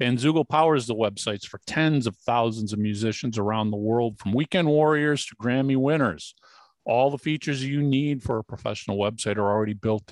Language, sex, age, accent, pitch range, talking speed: English, male, 50-69, American, 110-145 Hz, 185 wpm